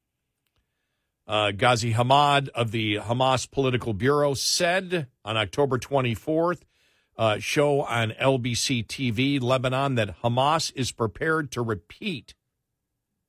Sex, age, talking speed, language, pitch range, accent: male, 50-69, 110 wpm, English, 120-145 Hz, American